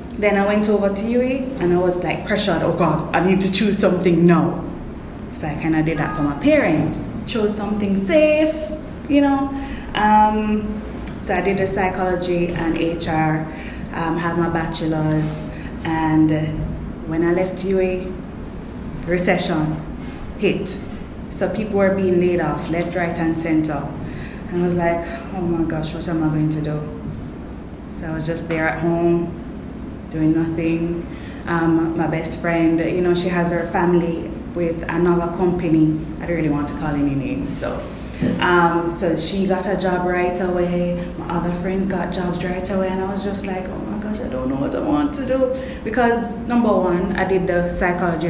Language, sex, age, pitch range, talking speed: English, female, 20-39, 165-195 Hz, 180 wpm